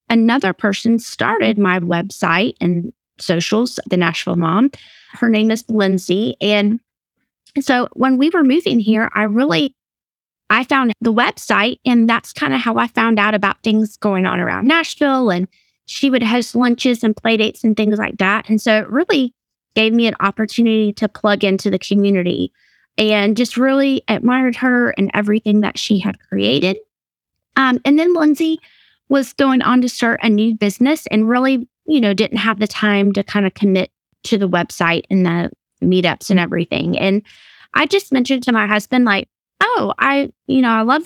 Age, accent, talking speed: 20-39, American, 180 wpm